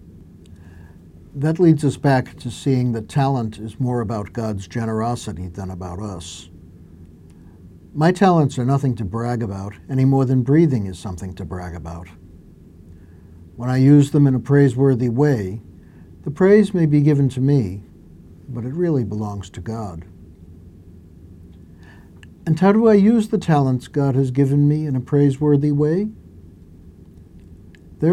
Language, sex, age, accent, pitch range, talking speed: English, male, 60-79, American, 85-145 Hz, 145 wpm